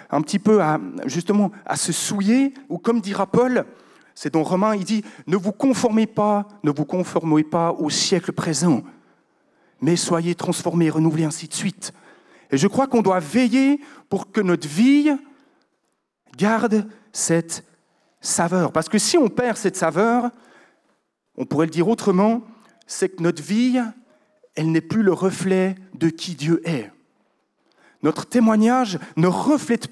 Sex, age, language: male, 40-59, French